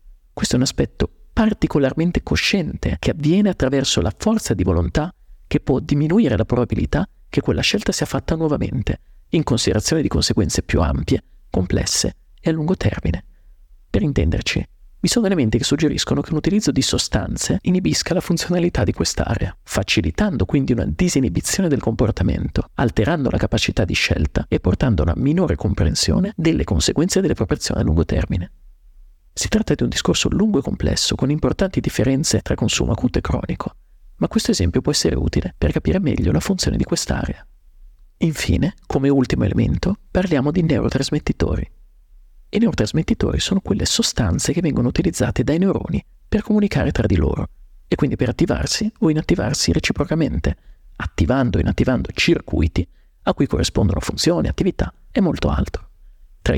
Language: Italian